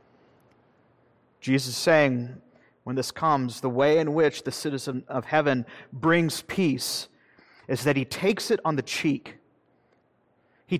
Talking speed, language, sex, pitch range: 140 wpm, English, male, 130-165 Hz